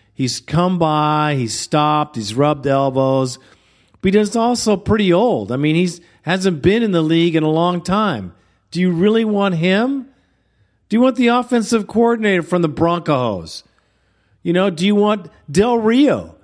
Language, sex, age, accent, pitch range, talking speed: English, male, 50-69, American, 135-205 Hz, 170 wpm